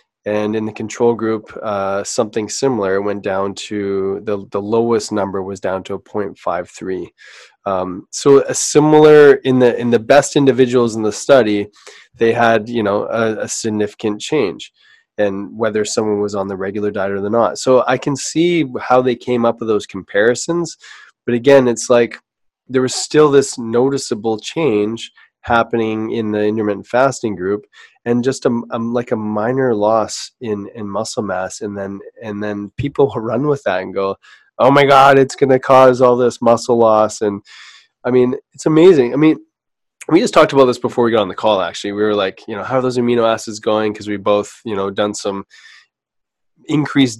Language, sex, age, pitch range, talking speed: English, male, 20-39, 105-125 Hz, 190 wpm